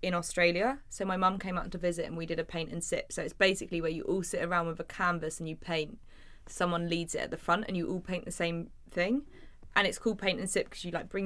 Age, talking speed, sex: 20-39, 280 wpm, female